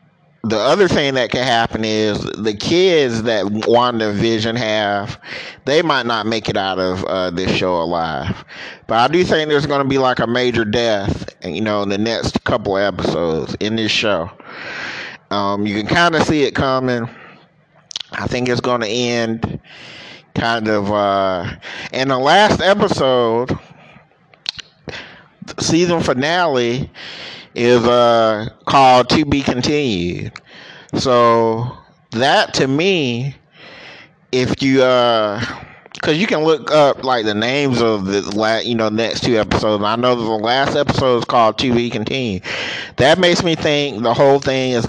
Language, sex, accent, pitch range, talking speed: English, male, American, 110-140 Hz, 150 wpm